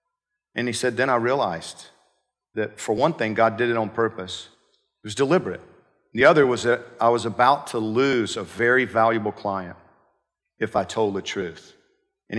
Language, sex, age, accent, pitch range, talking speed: English, male, 40-59, American, 120-185 Hz, 180 wpm